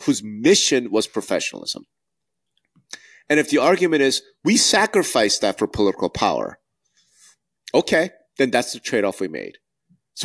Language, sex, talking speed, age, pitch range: English, male, 140 wpm, 30-49, 105-170 Hz